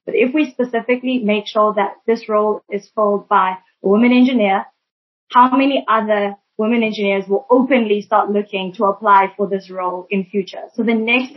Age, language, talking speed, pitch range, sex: 20-39, English, 180 wpm, 200-235 Hz, female